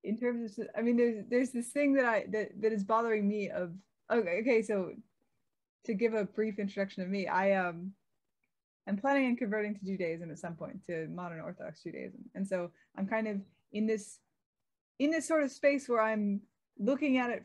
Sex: female